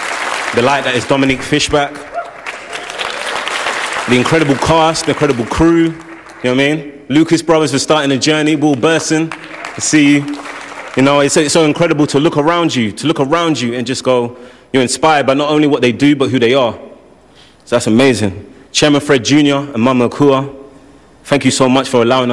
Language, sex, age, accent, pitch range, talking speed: English, male, 30-49, British, 115-145 Hz, 195 wpm